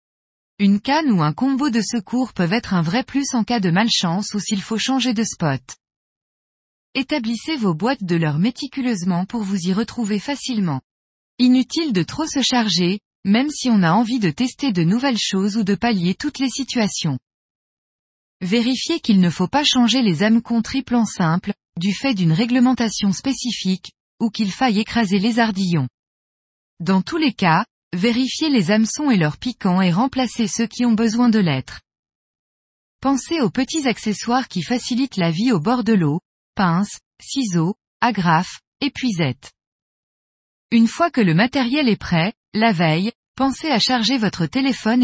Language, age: French, 20-39